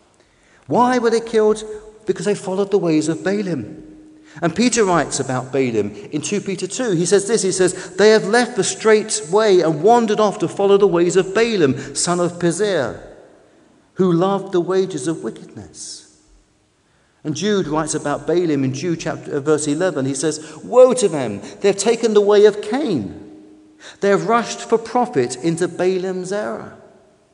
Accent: British